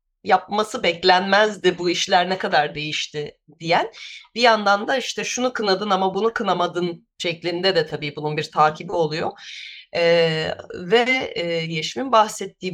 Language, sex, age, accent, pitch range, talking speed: Turkish, female, 30-49, native, 155-215 Hz, 135 wpm